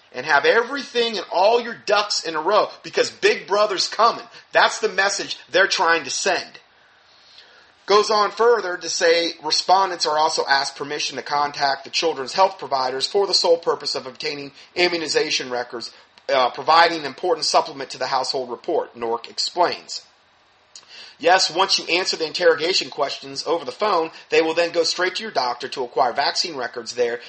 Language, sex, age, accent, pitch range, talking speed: English, male, 30-49, American, 140-210 Hz, 175 wpm